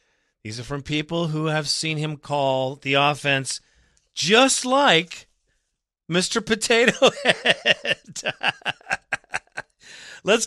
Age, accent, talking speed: 40-59, American, 95 wpm